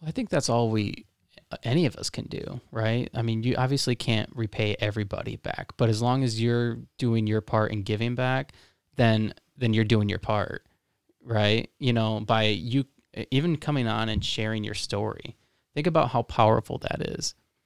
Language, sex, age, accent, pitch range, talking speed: English, male, 20-39, American, 110-130 Hz, 185 wpm